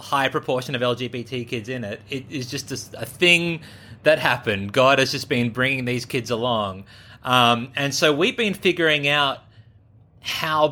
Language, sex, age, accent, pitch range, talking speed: English, male, 30-49, Australian, 115-140 Hz, 175 wpm